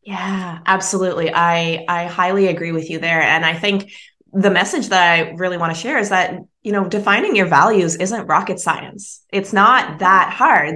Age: 20-39